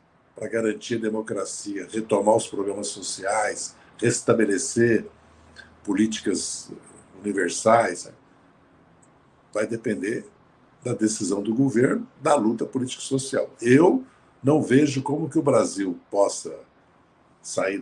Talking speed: 105 wpm